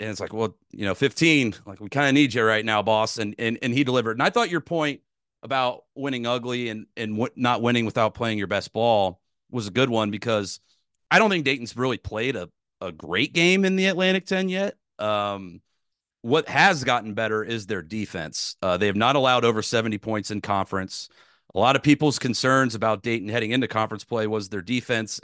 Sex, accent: male, American